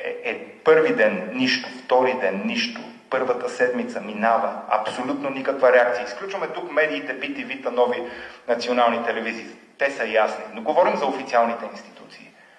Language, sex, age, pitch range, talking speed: Bulgarian, male, 30-49, 115-155 Hz, 145 wpm